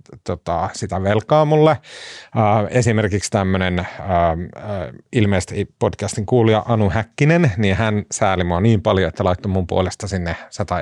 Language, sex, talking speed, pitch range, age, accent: Finnish, male, 140 wpm, 95-115 Hz, 30-49, native